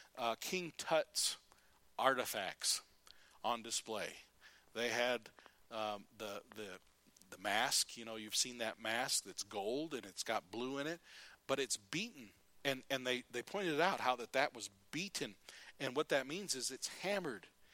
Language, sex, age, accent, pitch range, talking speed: English, male, 40-59, American, 125-155 Hz, 160 wpm